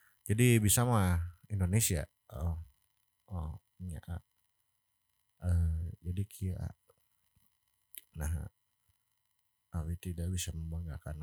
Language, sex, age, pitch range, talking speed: Indonesian, male, 30-49, 90-105 Hz, 85 wpm